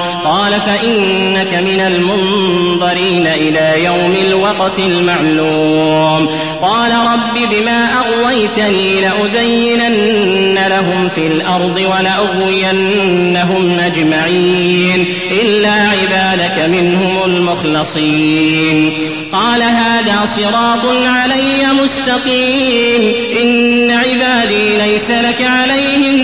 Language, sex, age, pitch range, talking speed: Arabic, male, 30-49, 200-260 Hz, 75 wpm